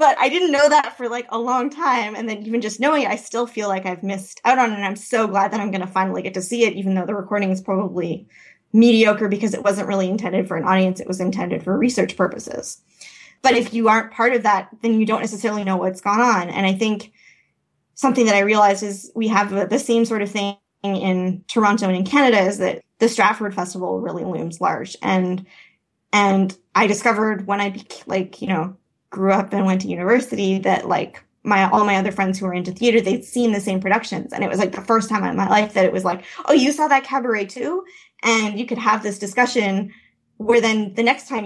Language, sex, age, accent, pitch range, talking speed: English, female, 20-39, American, 195-230 Hz, 240 wpm